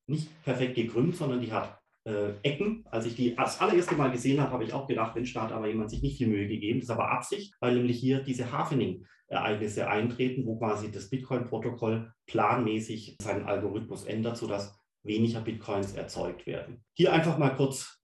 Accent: German